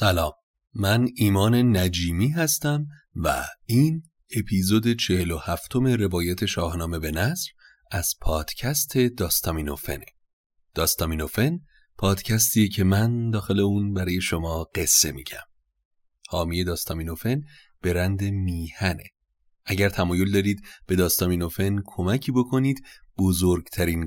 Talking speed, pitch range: 95 wpm, 90-120 Hz